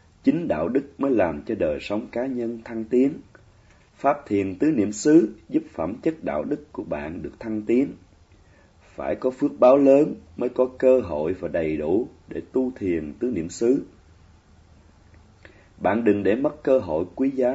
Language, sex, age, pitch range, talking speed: Vietnamese, male, 30-49, 85-130 Hz, 180 wpm